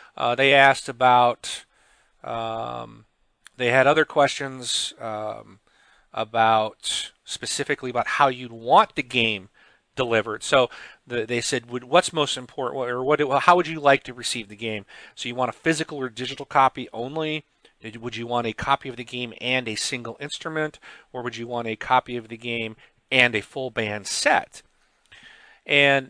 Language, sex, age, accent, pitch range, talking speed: English, male, 40-59, American, 120-150 Hz, 165 wpm